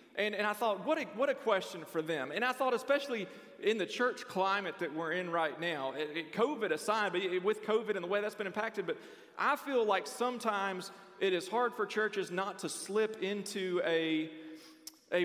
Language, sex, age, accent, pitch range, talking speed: English, male, 40-59, American, 175-240 Hz, 210 wpm